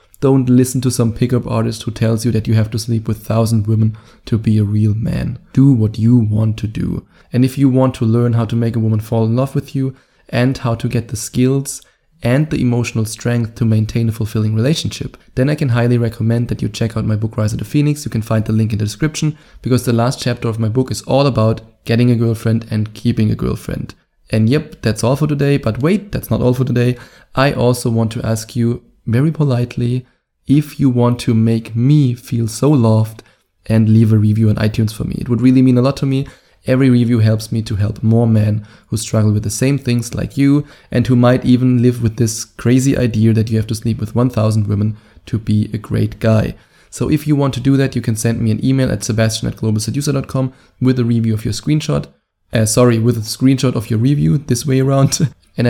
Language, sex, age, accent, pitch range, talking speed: English, male, 20-39, German, 110-130 Hz, 235 wpm